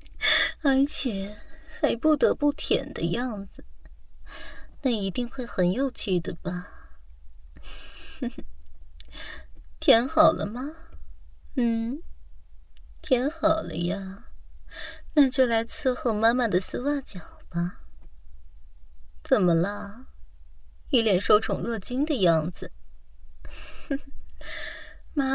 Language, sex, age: Chinese, female, 30-49